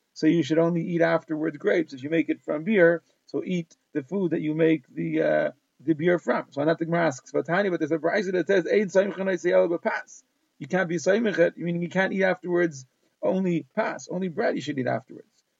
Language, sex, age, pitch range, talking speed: English, male, 40-59, 160-185 Hz, 210 wpm